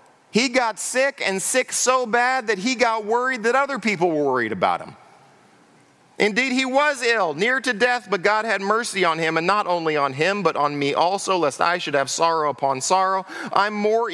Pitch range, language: 155-205 Hz, English